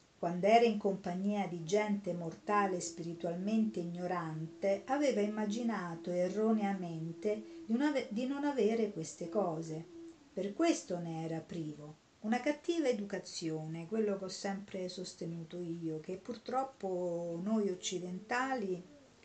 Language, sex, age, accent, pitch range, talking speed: Italian, female, 50-69, native, 170-225 Hz, 110 wpm